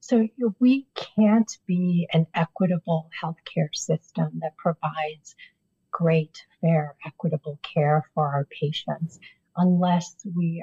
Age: 50-69